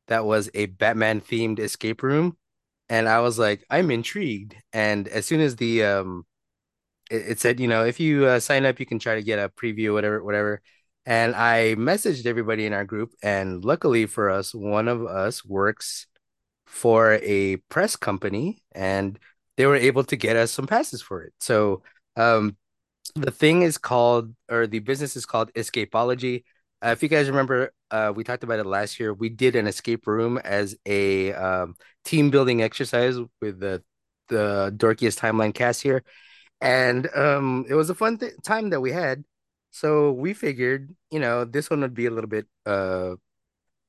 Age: 20-39